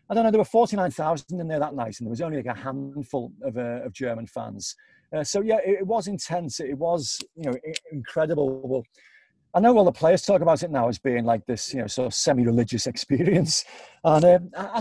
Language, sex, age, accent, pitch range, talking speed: English, male, 40-59, British, 130-190 Hz, 230 wpm